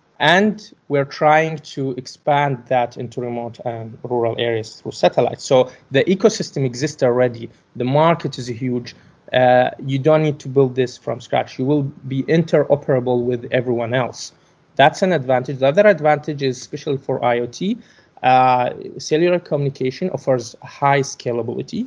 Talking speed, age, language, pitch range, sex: 150 wpm, 20-39, English, 125-150 Hz, male